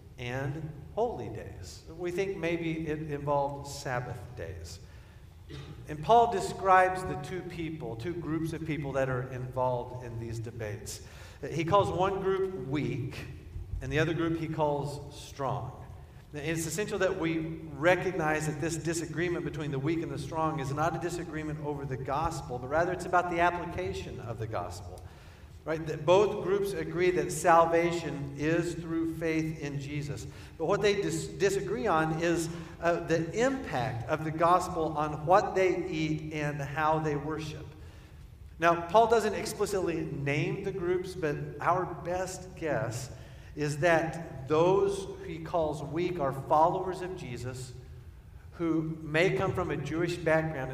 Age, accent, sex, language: 50-69, American, male, English